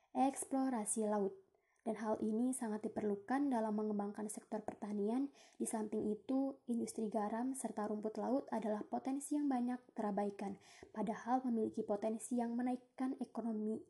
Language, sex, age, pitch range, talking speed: Indonesian, female, 20-39, 215-240 Hz, 130 wpm